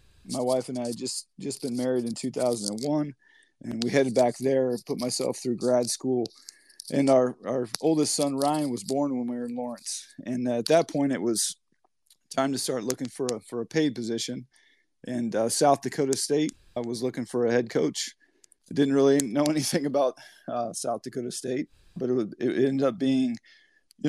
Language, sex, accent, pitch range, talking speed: English, male, American, 120-140 Hz, 200 wpm